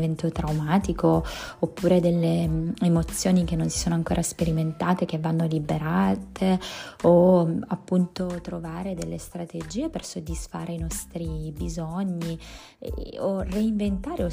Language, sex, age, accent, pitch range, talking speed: Italian, female, 20-39, native, 165-190 Hz, 110 wpm